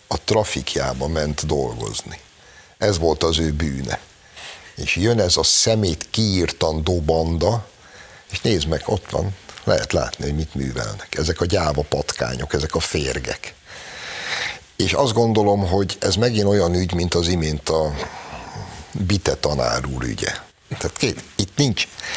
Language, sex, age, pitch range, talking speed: Hungarian, male, 60-79, 75-100 Hz, 145 wpm